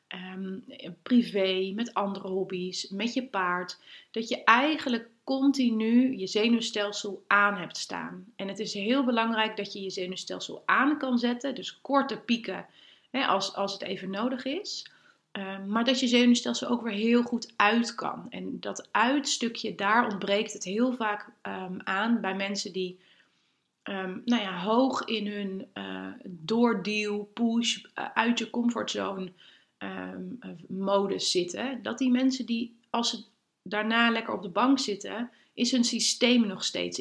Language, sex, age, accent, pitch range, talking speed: Dutch, female, 30-49, Dutch, 195-240 Hz, 155 wpm